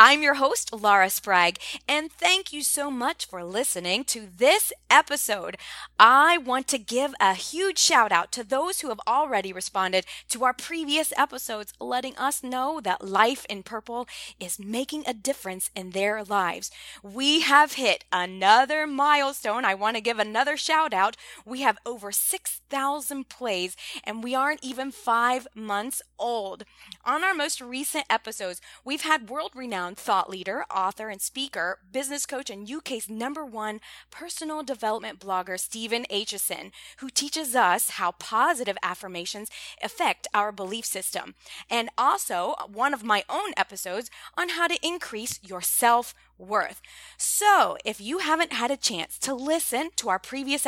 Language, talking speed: English, 155 wpm